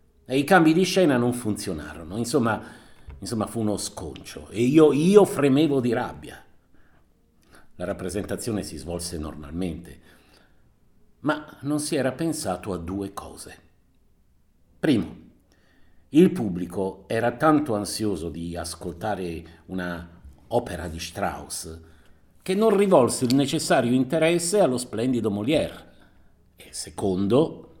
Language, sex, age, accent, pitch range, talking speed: Italian, male, 50-69, native, 90-130 Hz, 115 wpm